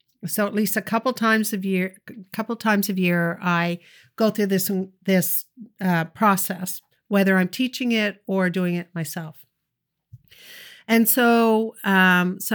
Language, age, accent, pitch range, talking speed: English, 50-69, American, 175-205 Hz, 155 wpm